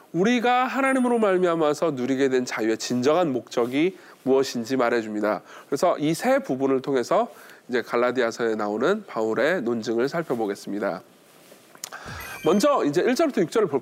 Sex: male